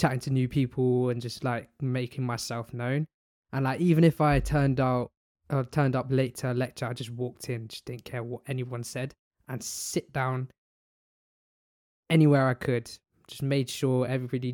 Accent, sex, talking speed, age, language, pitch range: British, male, 180 wpm, 20-39, English, 120-145 Hz